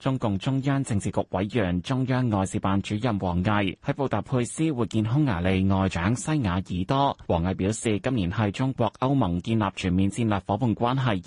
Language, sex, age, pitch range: Chinese, male, 20-39, 100-135 Hz